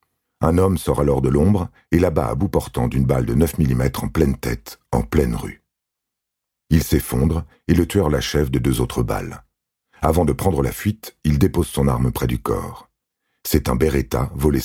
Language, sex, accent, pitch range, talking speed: French, male, French, 65-85 Hz, 195 wpm